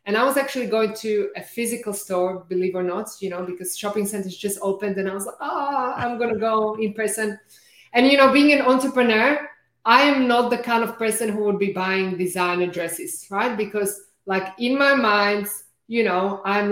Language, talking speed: English, 215 wpm